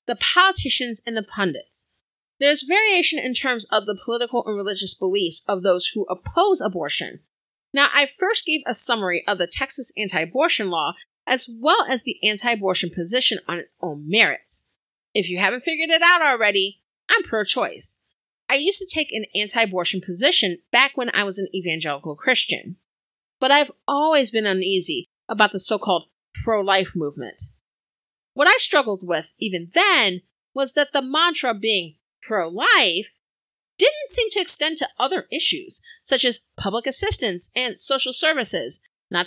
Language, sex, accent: English, female, American